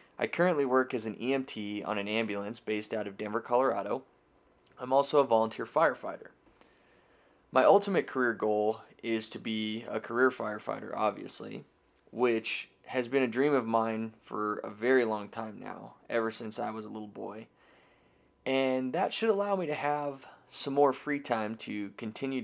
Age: 20-39